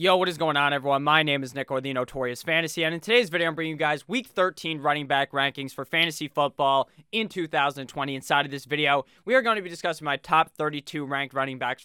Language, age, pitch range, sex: English, 20-39, 145-195 Hz, male